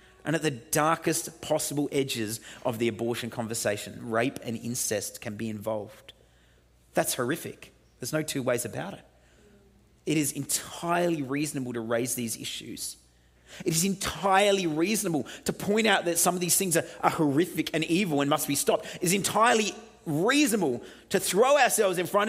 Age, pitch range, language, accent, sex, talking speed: 30-49, 125-185 Hz, English, Australian, male, 165 wpm